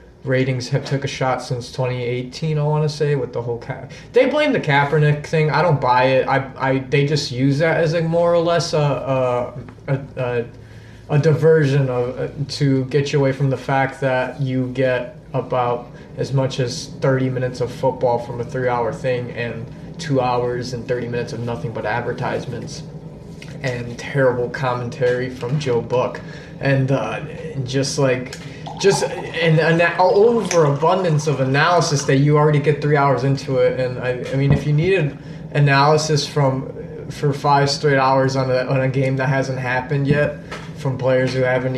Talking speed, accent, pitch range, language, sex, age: 175 wpm, American, 125-150 Hz, English, male, 20-39